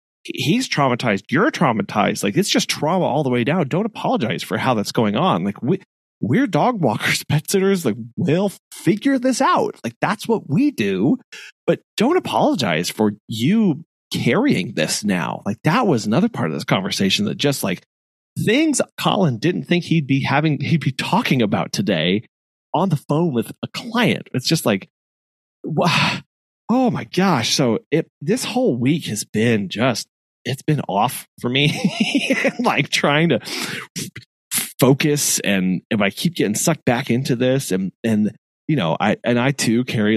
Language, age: English, 30-49